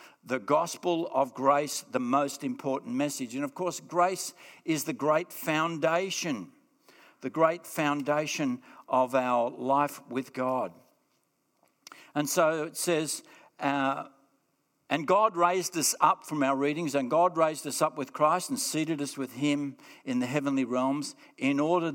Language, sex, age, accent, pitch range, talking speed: English, male, 60-79, Australian, 135-180 Hz, 150 wpm